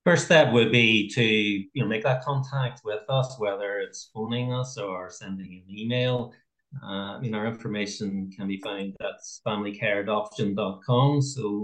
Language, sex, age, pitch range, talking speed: English, male, 30-49, 105-125 Hz, 160 wpm